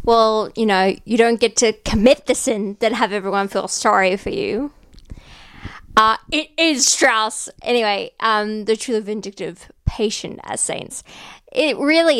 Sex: female